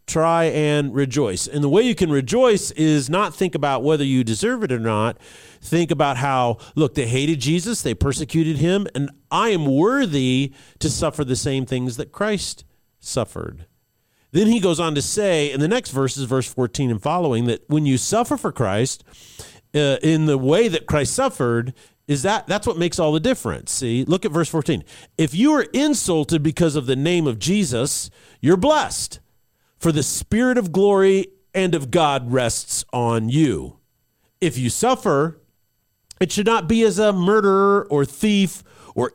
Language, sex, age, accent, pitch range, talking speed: English, male, 40-59, American, 130-185 Hz, 180 wpm